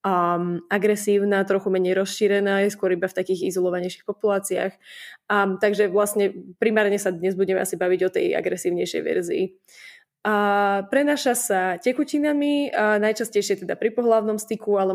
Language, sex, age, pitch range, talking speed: Slovak, female, 20-39, 190-215 Hz, 140 wpm